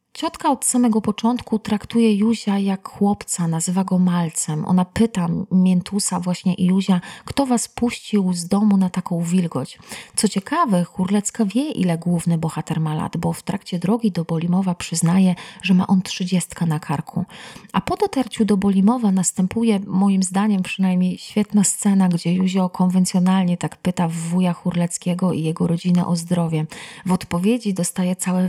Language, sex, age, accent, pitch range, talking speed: Polish, female, 30-49, native, 175-200 Hz, 155 wpm